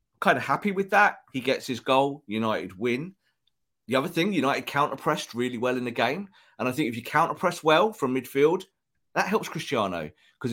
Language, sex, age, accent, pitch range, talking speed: English, male, 30-49, British, 110-140 Hz, 195 wpm